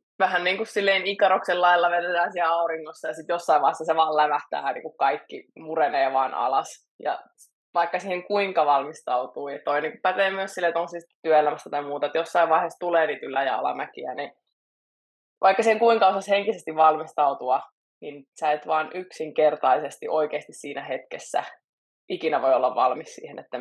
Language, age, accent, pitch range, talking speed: Finnish, 20-39, native, 150-185 Hz, 175 wpm